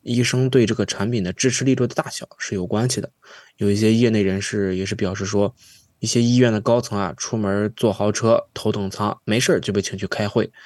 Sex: male